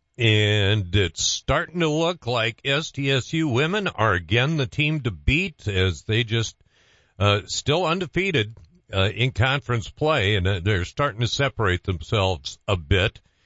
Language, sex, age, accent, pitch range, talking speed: English, male, 50-69, American, 100-145 Hz, 145 wpm